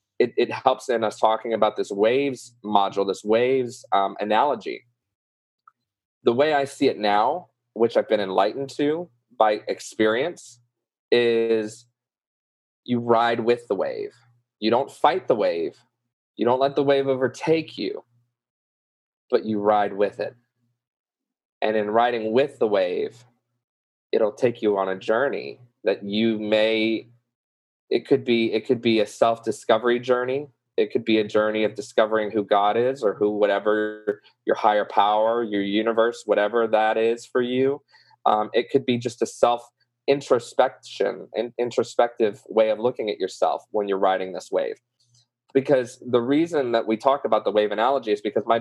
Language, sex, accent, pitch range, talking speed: English, male, American, 110-135 Hz, 160 wpm